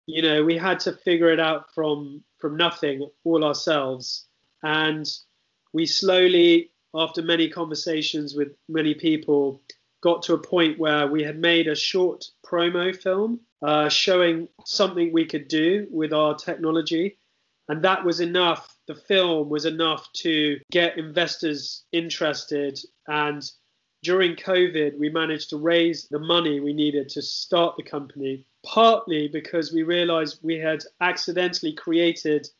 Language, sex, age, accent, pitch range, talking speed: Spanish, male, 20-39, British, 150-175 Hz, 145 wpm